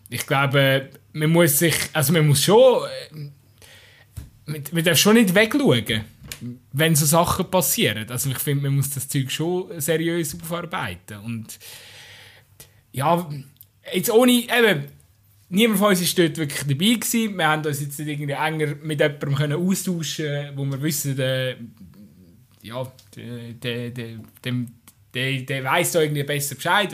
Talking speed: 160 wpm